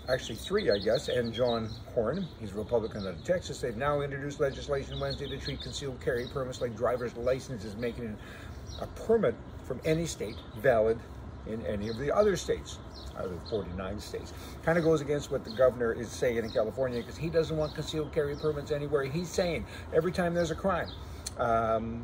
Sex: male